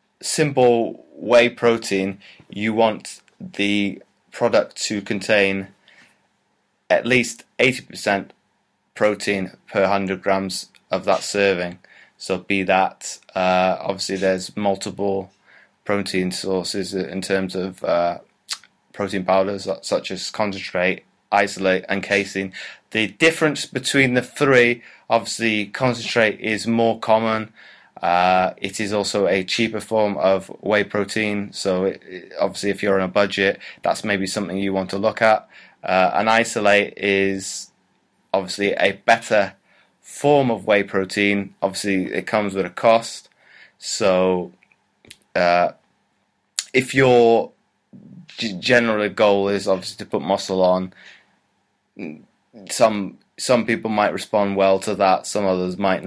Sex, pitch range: male, 95-110 Hz